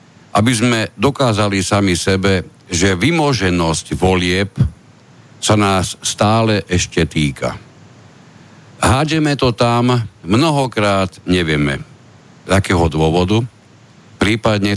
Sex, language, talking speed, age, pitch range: male, Slovak, 90 wpm, 50-69, 80-110 Hz